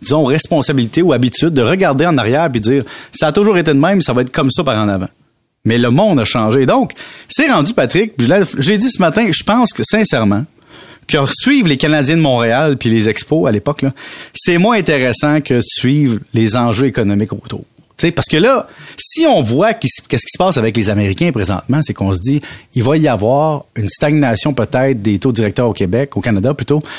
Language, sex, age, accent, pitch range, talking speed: French, male, 30-49, Canadian, 120-165 Hz, 220 wpm